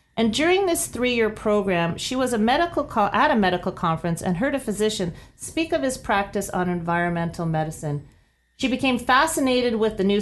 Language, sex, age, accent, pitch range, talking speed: English, female, 40-59, American, 175-215 Hz, 180 wpm